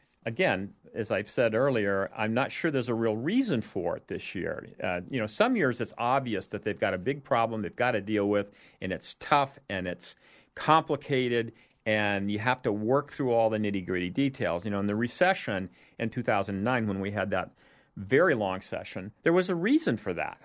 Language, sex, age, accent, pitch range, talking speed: English, male, 50-69, American, 100-130 Hz, 205 wpm